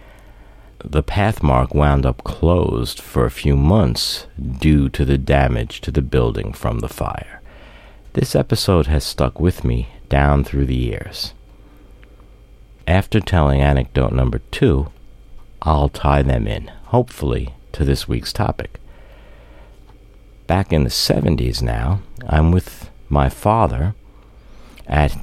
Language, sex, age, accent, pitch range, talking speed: English, male, 60-79, American, 70-90 Hz, 125 wpm